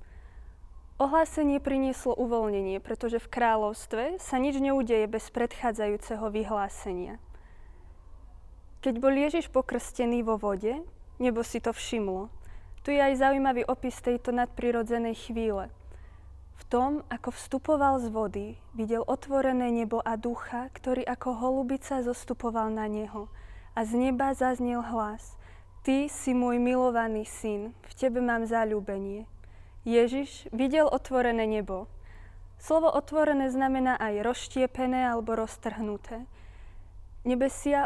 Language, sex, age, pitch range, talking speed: Slovak, female, 20-39, 220-265 Hz, 115 wpm